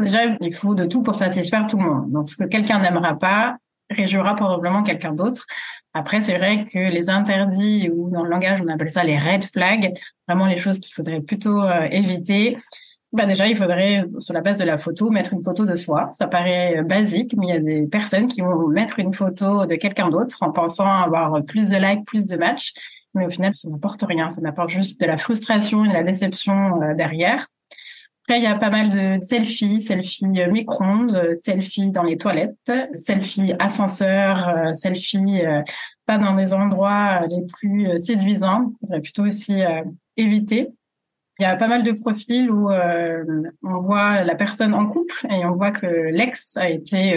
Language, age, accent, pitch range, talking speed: French, 30-49, French, 175-210 Hz, 200 wpm